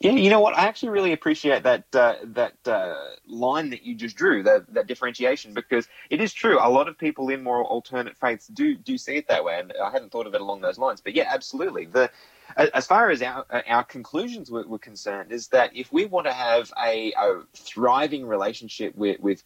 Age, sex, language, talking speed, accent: 20-39, male, English, 220 wpm, Australian